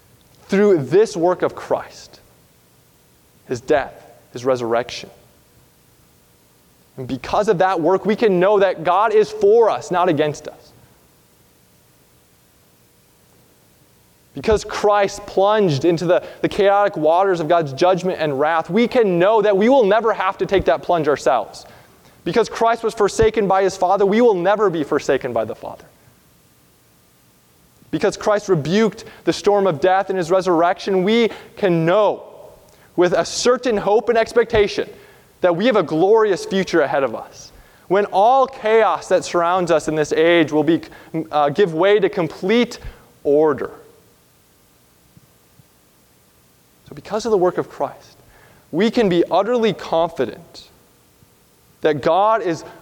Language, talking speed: English, 145 wpm